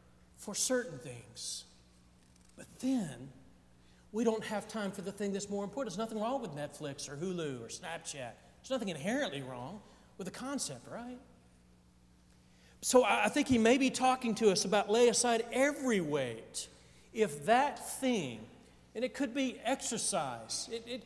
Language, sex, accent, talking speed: English, male, American, 160 wpm